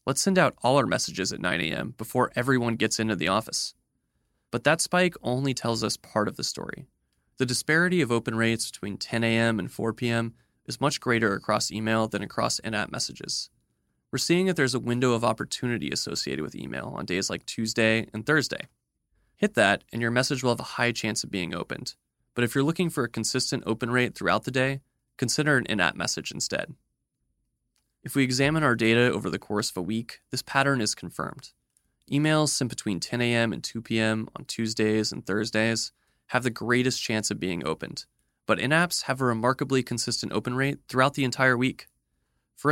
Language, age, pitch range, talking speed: English, 20-39, 110-130 Hz, 195 wpm